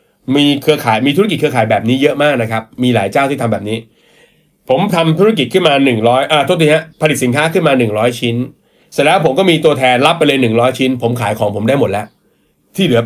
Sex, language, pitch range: male, Thai, 115-150 Hz